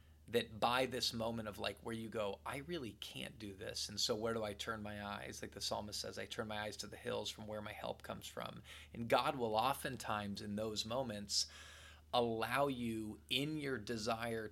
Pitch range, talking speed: 100-115 Hz, 210 wpm